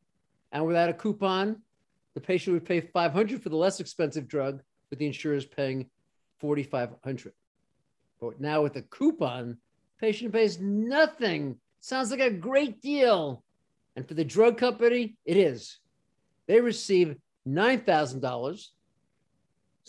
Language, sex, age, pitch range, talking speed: English, male, 50-69, 140-200 Hz, 125 wpm